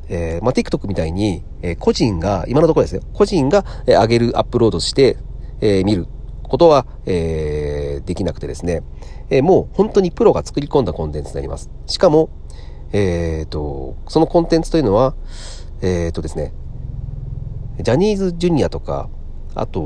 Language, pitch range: Japanese, 75-120 Hz